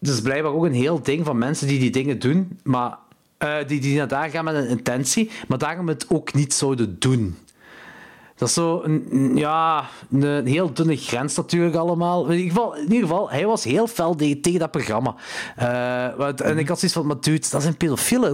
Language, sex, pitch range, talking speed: Dutch, male, 140-185 Hz, 225 wpm